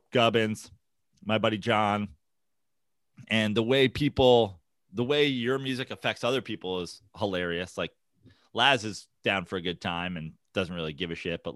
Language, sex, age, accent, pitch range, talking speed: English, male, 30-49, American, 100-130 Hz, 165 wpm